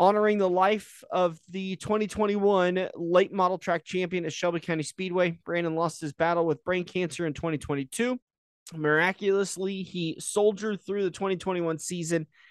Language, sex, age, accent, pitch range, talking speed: English, male, 30-49, American, 155-185 Hz, 145 wpm